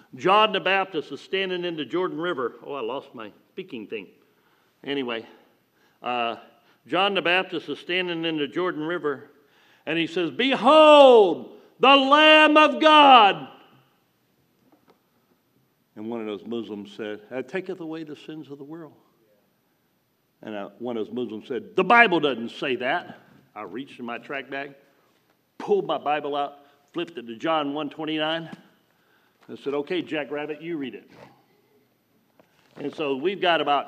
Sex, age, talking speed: male, 60-79, 150 wpm